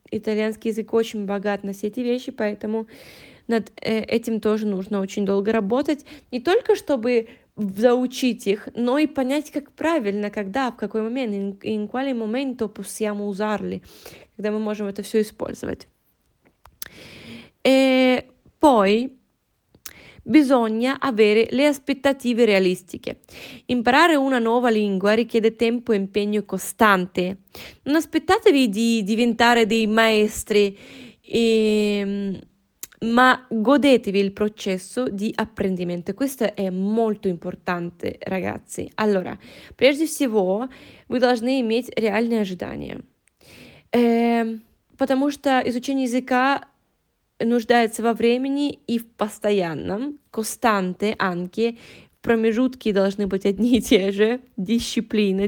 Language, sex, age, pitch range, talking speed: Italian, female, 20-39, 210-250 Hz, 105 wpm